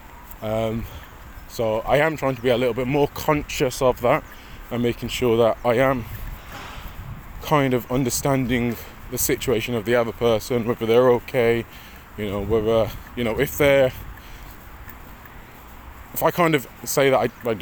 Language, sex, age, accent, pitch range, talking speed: English, male, 20-39, British, 110-135 Hz, 165 wpm